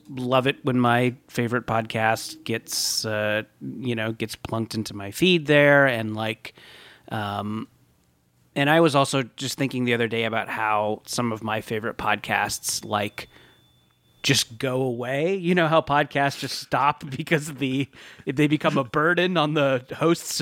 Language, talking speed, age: English, 165 wpm, 30-49